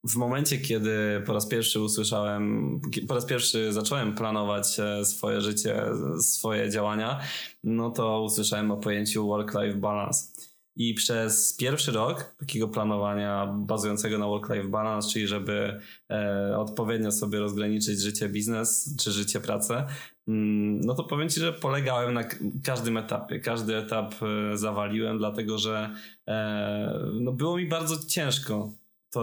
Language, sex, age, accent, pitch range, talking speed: Polish, male, 20-39, native, 105-120 Hz, 125 wpm